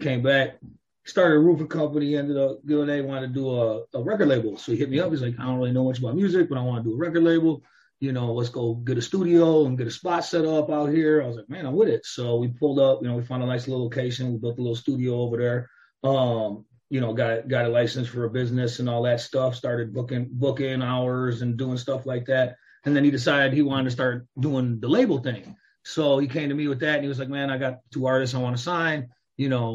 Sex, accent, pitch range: male, American, 125-155 Hz